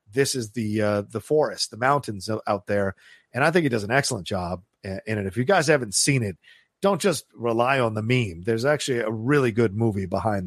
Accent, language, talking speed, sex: American, English, 225 wpm, male